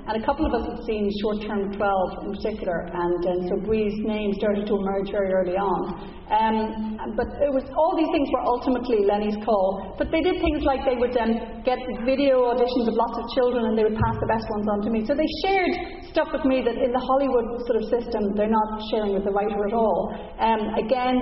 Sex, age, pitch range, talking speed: female, 40-59, 210-260 Hz, 235 wpm